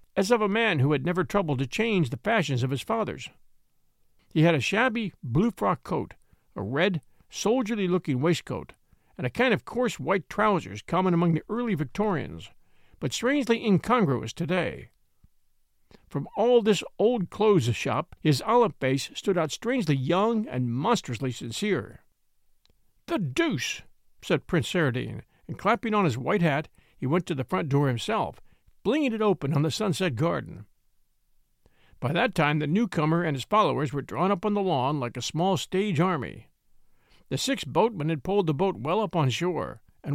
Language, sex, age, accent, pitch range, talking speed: English, male, 50-69, American, 140-205 Hz, 165 wpm